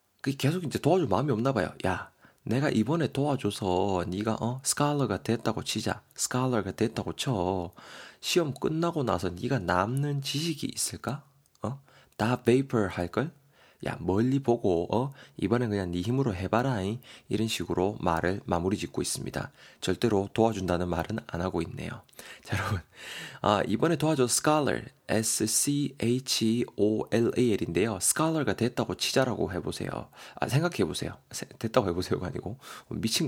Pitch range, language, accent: 95-130 Hz, Korean, native